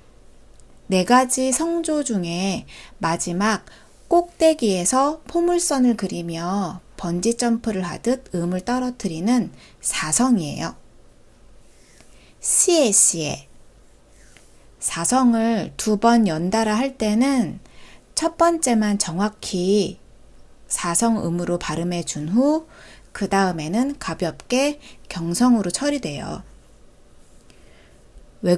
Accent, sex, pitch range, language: native, female, 180-250 Hz, Korean